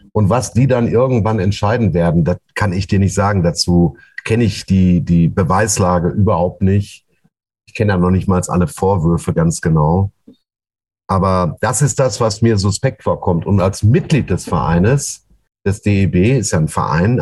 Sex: male